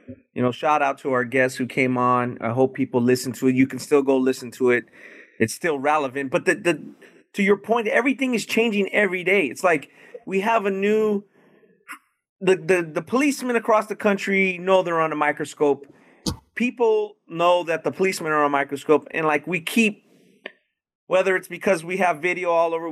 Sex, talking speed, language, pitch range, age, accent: male, 205 wpm, English, 145-200 Hz, 30-49, American